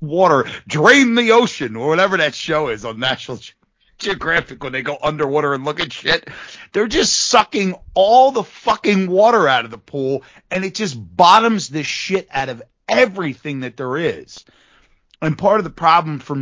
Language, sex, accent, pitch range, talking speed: English, male, American, 120-185 Hz, 185 wpm